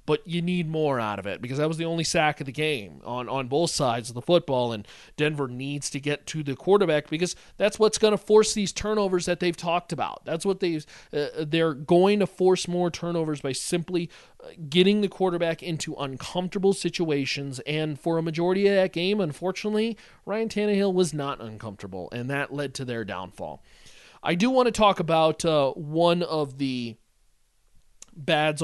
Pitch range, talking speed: 140-185 Hz, 190 wpm